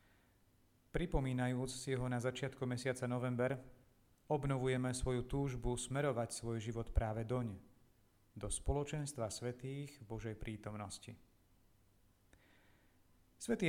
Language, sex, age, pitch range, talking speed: Slovak, male, 40-59, 110-135 Hz, 95 wpm